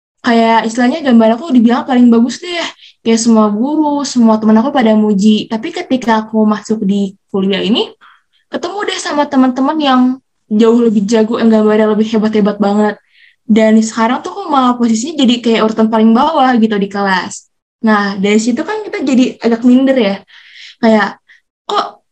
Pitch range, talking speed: 215-260 Hz, 170 wpm